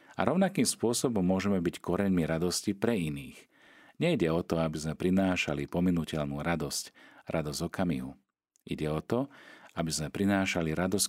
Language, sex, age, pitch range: Slovak, male, 40-59, 75-95 Hz